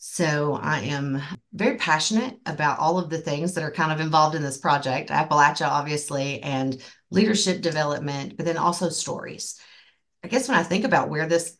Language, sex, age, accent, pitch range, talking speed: English, female, 40-59, American, 130-170 Hz, 180 wpm